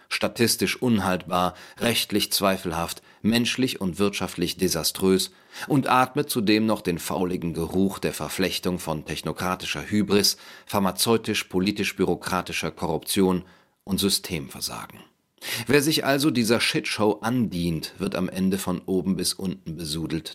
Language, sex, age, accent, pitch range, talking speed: German, male, 40-59, German, 85-105 Hz, 110 wpm